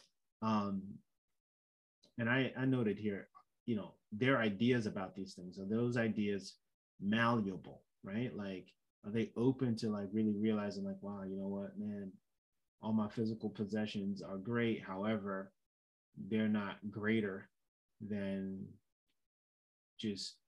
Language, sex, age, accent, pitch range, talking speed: English, male, 20-39, American, 95-115 Hz, 130 wpm